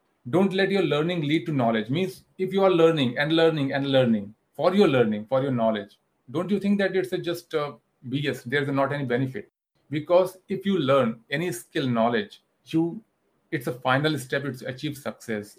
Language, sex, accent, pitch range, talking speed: Hindi, male, native, 120-160 Hz, 195 wpm